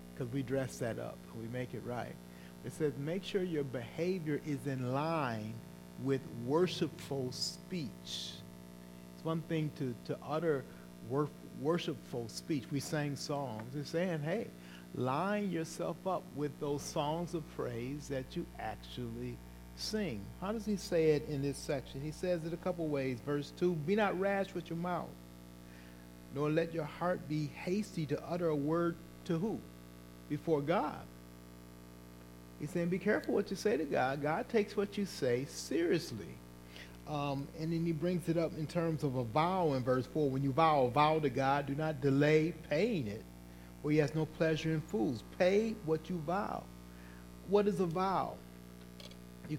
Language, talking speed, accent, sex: English, 170 wpm, American, male